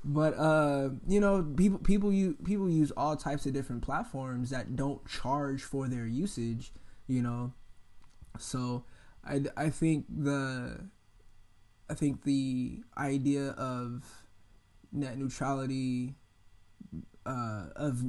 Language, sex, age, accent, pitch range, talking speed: English, male, 20-39, American, 115-135 Hz, 120 wpm